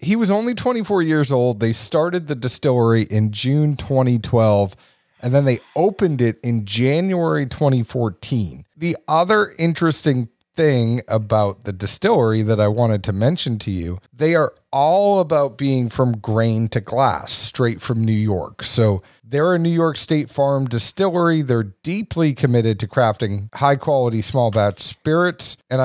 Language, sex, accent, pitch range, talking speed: English, male, American, 110-150 Hz, 160 wpm